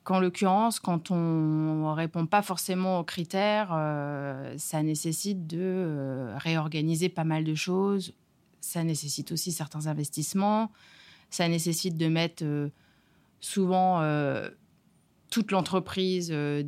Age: 30-49